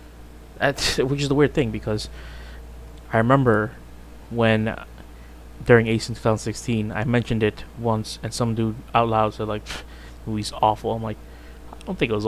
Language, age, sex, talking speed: English, 20-39, male, 170 wpm